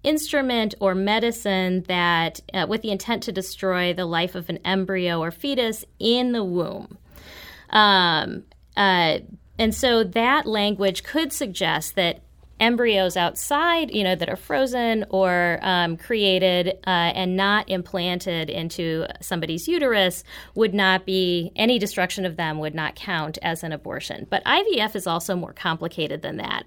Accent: American